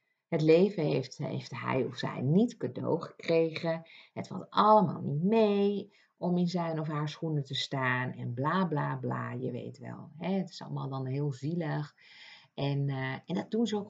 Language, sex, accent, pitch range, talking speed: Dutch, female, Dutch, 140-180 Hz, 190 wpm